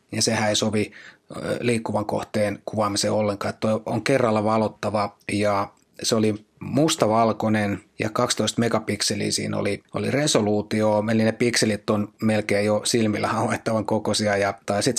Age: 30-49